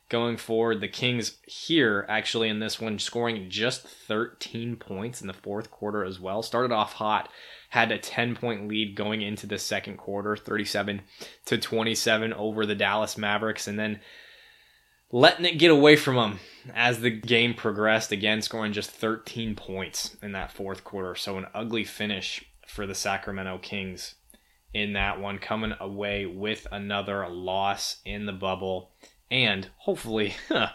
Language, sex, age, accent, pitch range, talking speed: English, male, 20-39, American, 100-115 Hz, 155 wpm